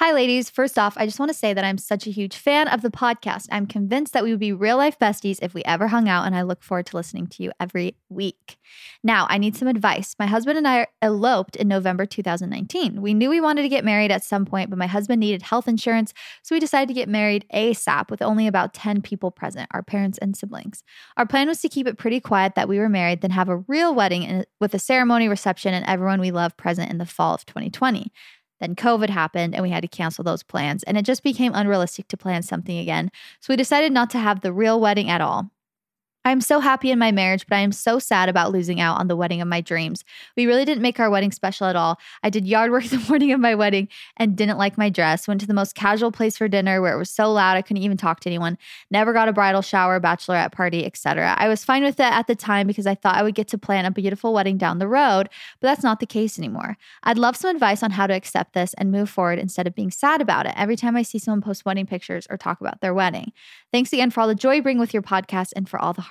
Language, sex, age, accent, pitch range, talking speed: English, female, 20-39, American, 185-235 Hz, 265 wpm